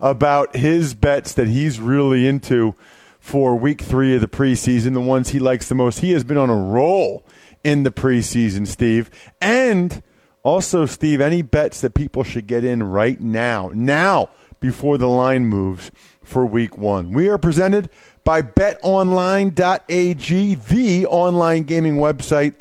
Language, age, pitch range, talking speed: English, 40-59, 125-160 Hz, 155 wpm